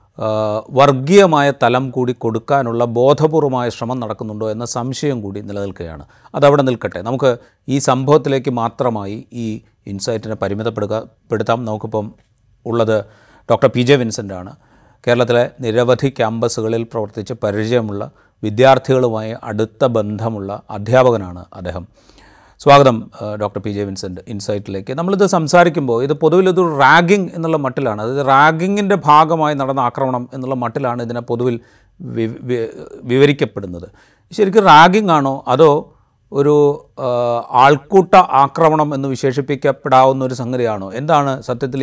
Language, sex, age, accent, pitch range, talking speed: Malayalam, male, 40-59, native, 110-140 Hz, 105 wpm